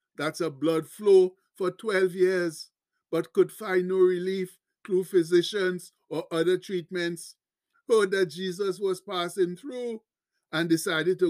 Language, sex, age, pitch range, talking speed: English, male, 60-79, 180-220 Hz, 140 wpm